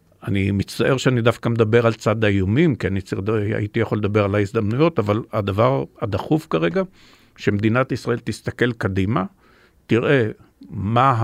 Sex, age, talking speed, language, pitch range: male, 60-79, 140 wpm, Hebrew, 100-120 Hz